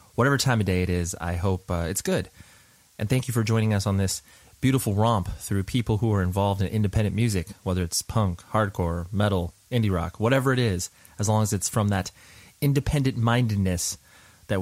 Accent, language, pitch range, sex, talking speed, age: American, English, 95-120 Hz, male, 195 wpm, 30-49